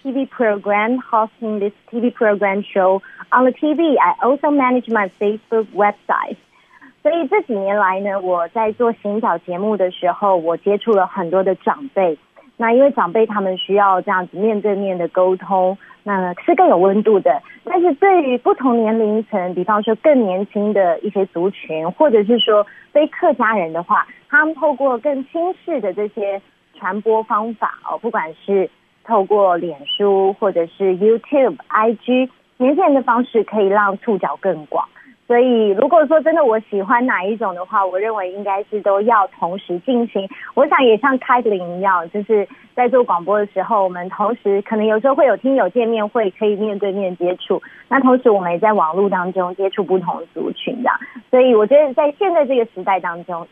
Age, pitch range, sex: 30-49, 190-245 Hz, female